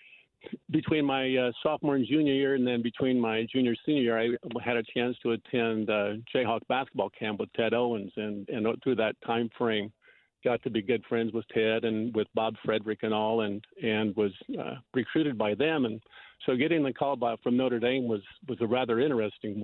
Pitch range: 115-135 Hz